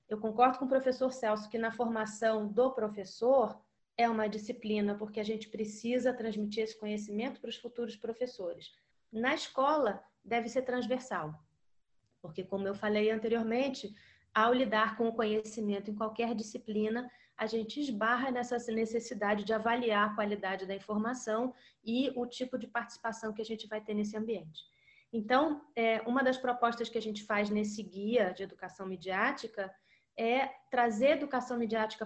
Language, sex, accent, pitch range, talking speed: Portuguese, female, Brazilian, 215-255 Hz, 155 wpm